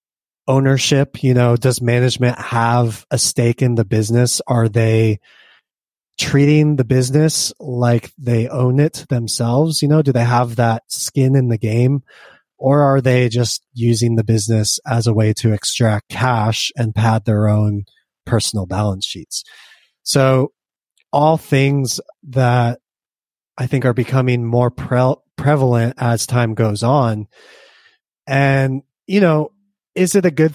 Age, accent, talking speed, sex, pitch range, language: 30-49, American, 145 wpm, male, 115-140 Hz, English